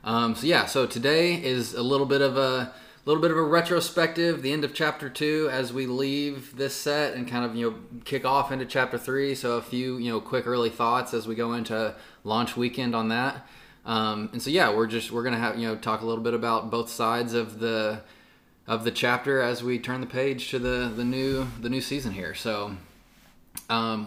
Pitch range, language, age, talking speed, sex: 110-130 Hz, English, 20-39, 225 wpm, male